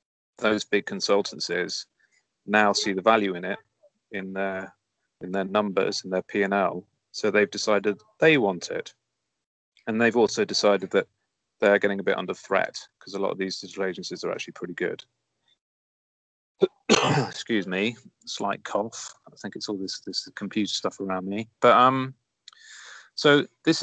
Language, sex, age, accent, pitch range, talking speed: English, male, 30-49, British, 95-110 Hz, 160 wpm